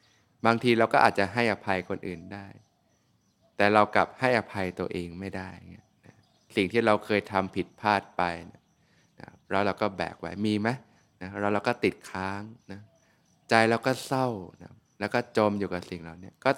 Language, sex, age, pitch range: Thai, male, 20-39, 100-120 Hz